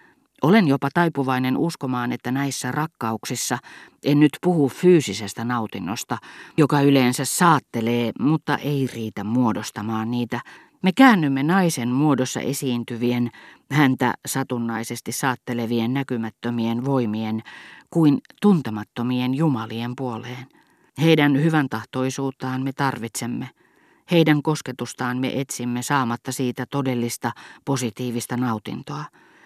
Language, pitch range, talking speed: Finnish, 120-145 Hz, 100 wpm